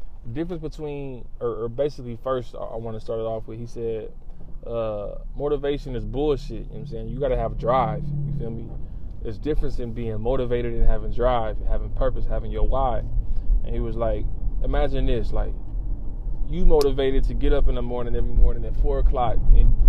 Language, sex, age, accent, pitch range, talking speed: English, male, 20-39, American, 115-140 Hz, 195 wpm